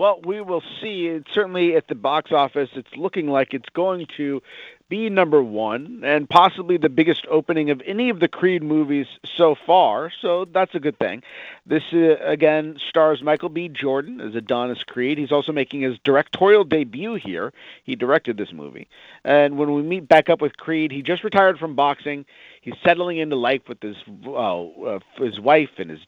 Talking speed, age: 190 wpm, 40-59